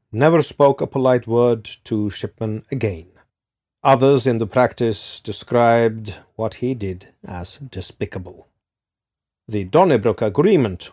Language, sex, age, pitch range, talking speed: English, male, 40-59, 95-130 Hz, 115 wpm